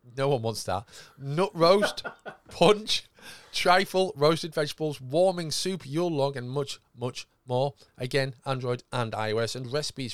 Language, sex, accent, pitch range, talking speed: English, male, British, 105-135 Hz, 140 wpm